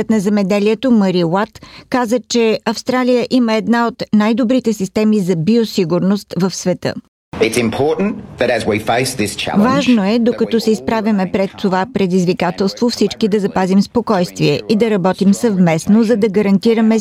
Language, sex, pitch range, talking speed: Bulgarian, female, 190-225 Hz, 125 wpm